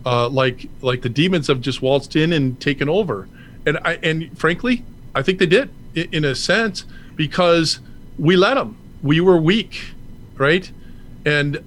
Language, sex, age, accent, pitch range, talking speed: English, male, 40-59, American, 130-175 Hz, 170 wpm